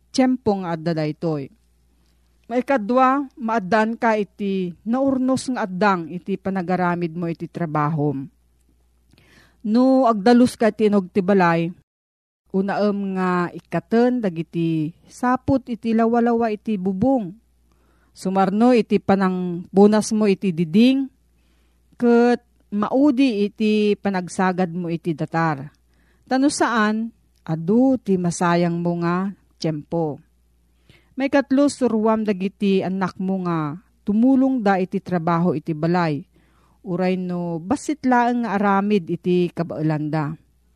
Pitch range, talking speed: 165-225 Hz, 110 wpm